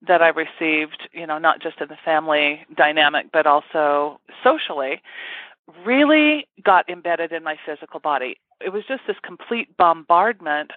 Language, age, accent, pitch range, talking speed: English, 40-59, American, 155-200 Hz, 150 wpm